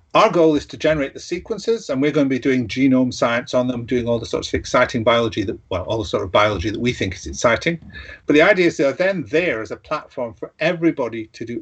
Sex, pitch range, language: male, 110-150 Hz, English